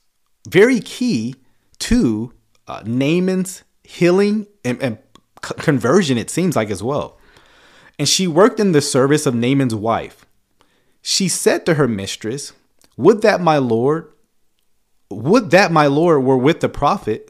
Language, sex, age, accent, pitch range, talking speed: English, male, 30-49, American, 115-165 Hz, 140 wpm